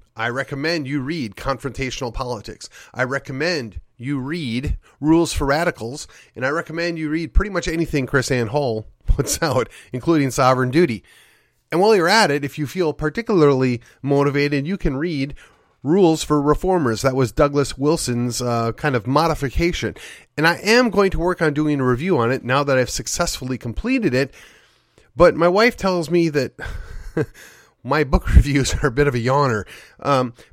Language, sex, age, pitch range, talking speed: English, male, 30-49, 125-170 Hz, 170 wpm